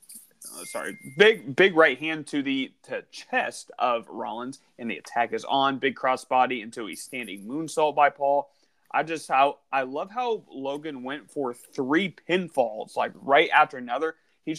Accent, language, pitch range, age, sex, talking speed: American, English, 130-170 Hz, 30-49, male, 165 wpm